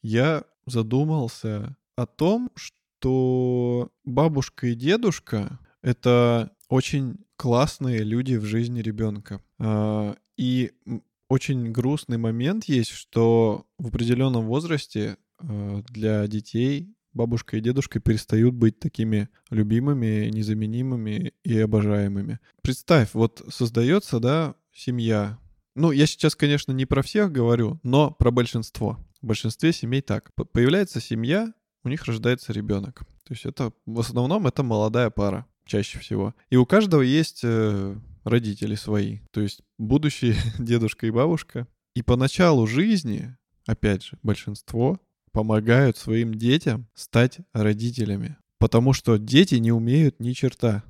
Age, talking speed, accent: 20-39, 125 wpm, native